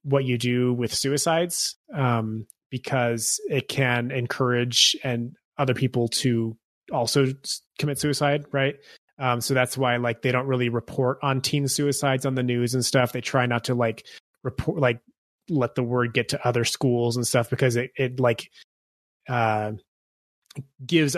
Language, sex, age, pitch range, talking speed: English, male, 20-39, 120-140 Hz, 160 wpm